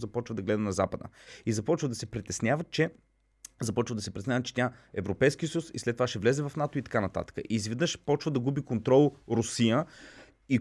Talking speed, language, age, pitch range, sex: 210 wpm, Bulgarian, 30-49, 105-140 Hz, male